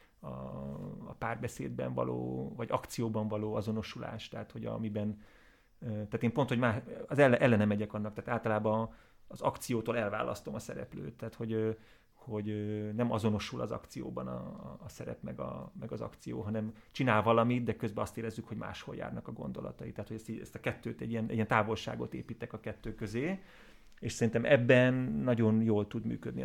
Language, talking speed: Hungarian, 170 wpm